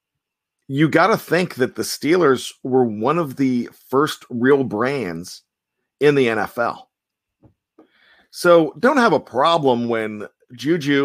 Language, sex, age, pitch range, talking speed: English, male, 40-59, 120-145 Hz, 130 wpm